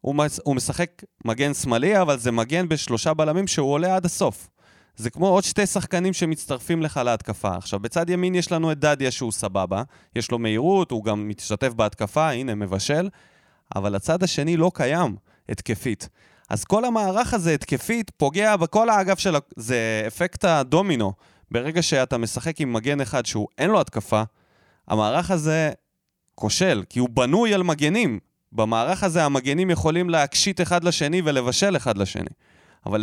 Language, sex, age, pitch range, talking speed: Hebrew, male, 20-39, 115-175 Hz, 155 wpm